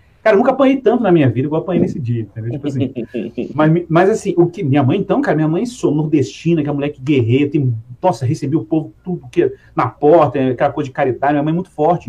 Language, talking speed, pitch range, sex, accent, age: Portuguese, 260 wpm, 130-185 Hz, male, Brazilian, 40-59